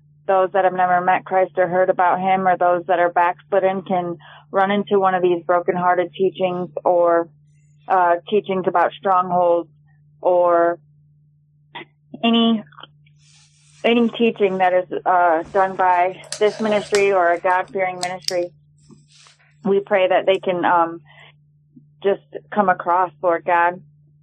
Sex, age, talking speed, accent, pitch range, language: female, 30-49, 135 wpm, American, 165-195 Hz, English